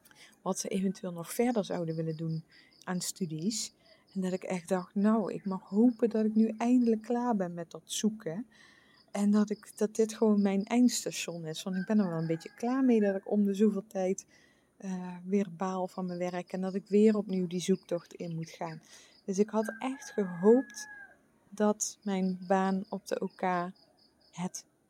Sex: female